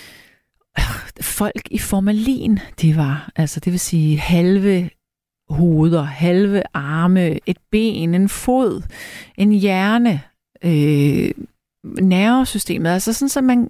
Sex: female